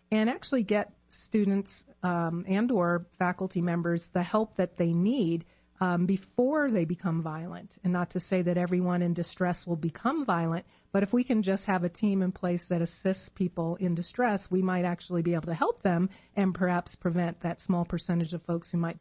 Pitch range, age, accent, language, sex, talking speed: 175-215 Hz, 40-59, American, English, female, 200 wpm